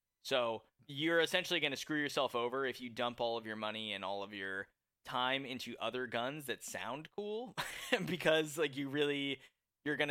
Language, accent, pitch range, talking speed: English, American, 105-145 Hz, 200 wpm